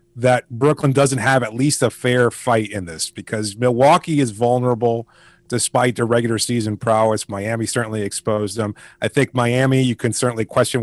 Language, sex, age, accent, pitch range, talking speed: English, male, 30-49, American, 120-140 Hz, 170 wpm